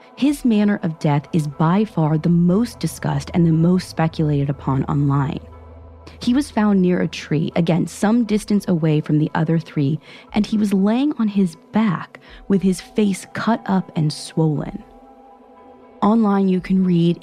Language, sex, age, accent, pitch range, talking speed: English, female, 30-49, American, 160-205 Hz, 165 wpm